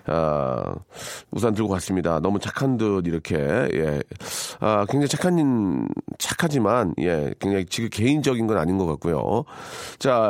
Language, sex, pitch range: Korean, male, 100-150 Hz